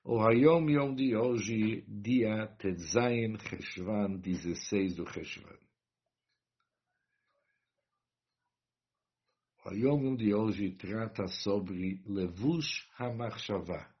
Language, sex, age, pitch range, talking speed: English, male, 60-79, 100-130 Hz, 85 wpm